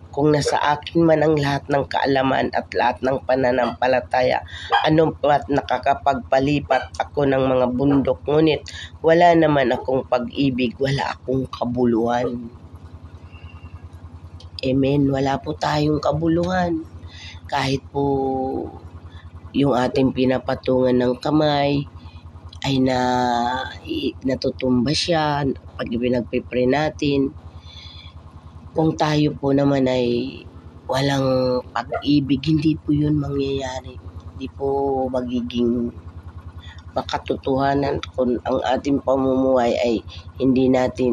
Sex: female